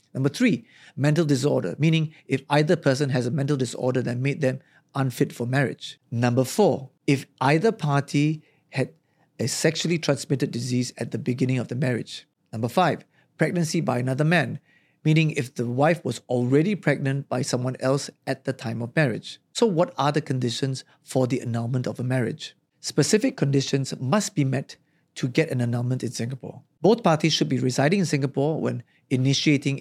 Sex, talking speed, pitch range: male, 175 wpm, 130-155 Hz